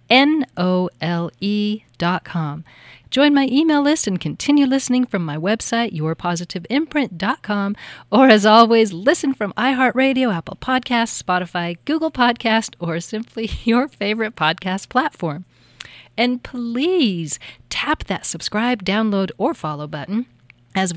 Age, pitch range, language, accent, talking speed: 40-59, 170-245 Hz, English, American, 115 wpm